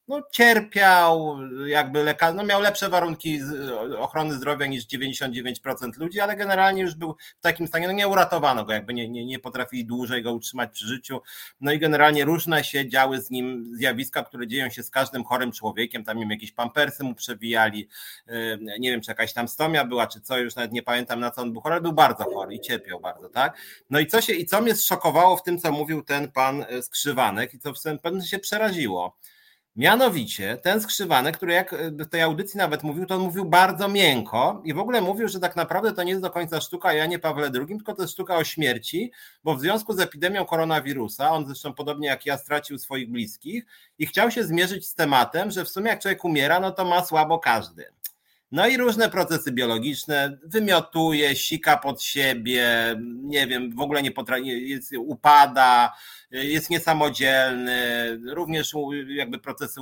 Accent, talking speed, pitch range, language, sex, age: native, 195 wpm, 130-180 Hz, Polish, male, 30-49